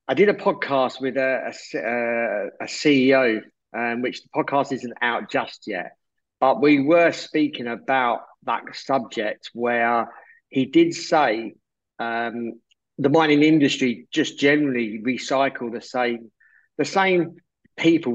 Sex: male